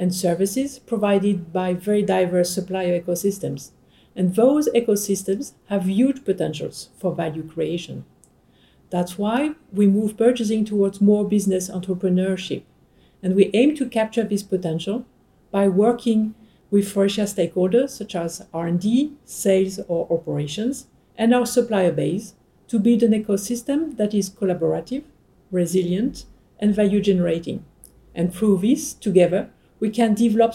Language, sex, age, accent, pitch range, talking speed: English, female, 50-69, French, 180-220 Hz, 130 wpm